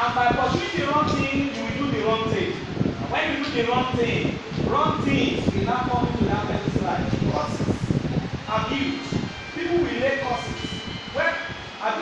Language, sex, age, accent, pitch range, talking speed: English, male, 30-49, Nigerian, 225-320 Hz, 175 wpm